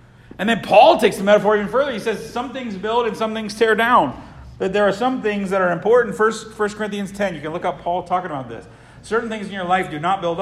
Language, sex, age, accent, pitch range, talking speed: English, male, 50-69, American, 165-220 Hz, 270 wpm